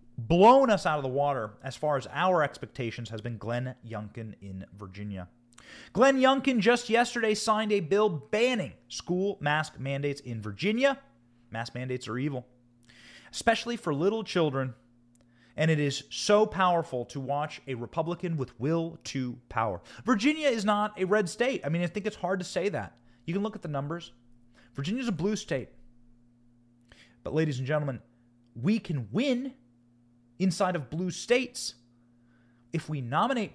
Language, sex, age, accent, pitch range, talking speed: English, male, 30-49, American, 120-175 Hz, 160 wpm